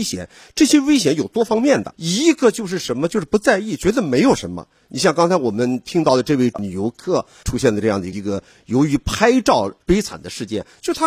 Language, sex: Chinese, male